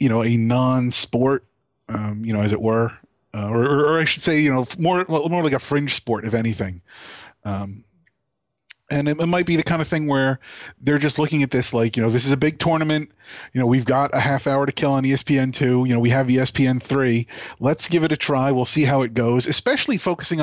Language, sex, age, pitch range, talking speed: English, male, 30-49, 125-155 Hz, 230 wpm